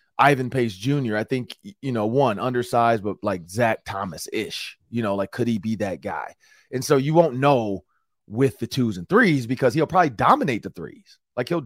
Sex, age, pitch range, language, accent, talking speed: male, 30-49, 110-135 Hz, English, American, 200 wpm